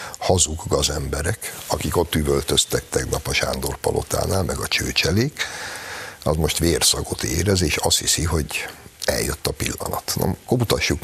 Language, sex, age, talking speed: Hungarian, male, 60-79, 135 wpm